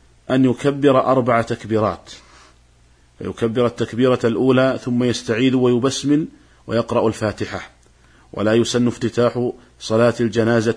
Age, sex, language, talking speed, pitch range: 40-59, male, Arabic, 95 wpm, 100-120 Hz